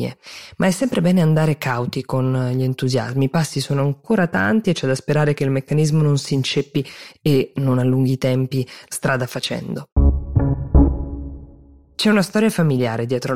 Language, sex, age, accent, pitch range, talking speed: Italian, female, 20-39, native, 130-160 Hz, 160 wpm